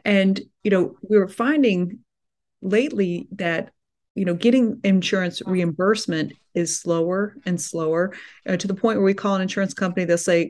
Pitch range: 170-200 Hz